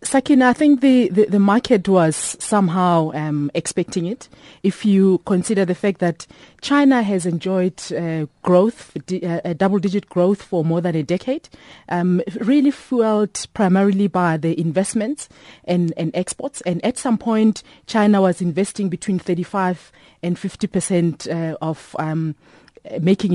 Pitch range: 170-215 Hz